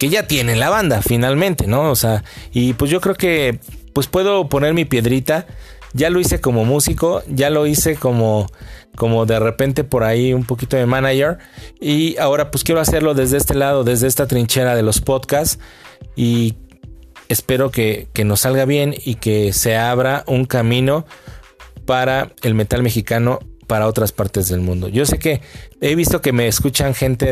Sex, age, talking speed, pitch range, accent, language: male, 30-49, 180 wpm, 110-140 Hz, Mexican, Spanish